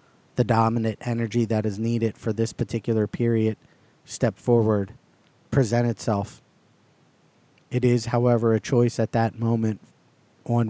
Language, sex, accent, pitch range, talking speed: English, male, American, 110-120 Hz, 125 wpm